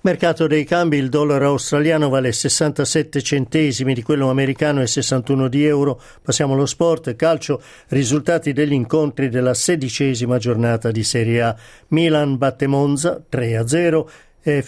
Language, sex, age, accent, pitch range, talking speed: Italian, male, 50-69, native, 125-155 Hz, 135 wpm